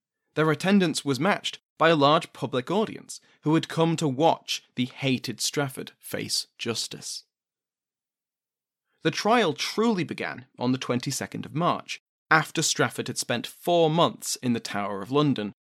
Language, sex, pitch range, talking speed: English, male, 125-185 Hz, 150 wpm